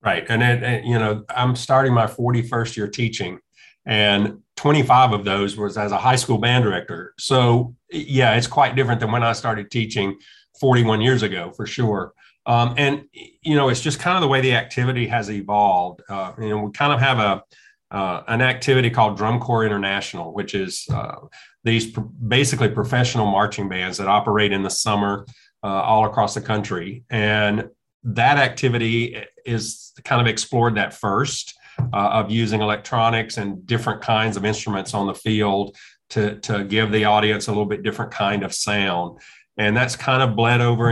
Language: English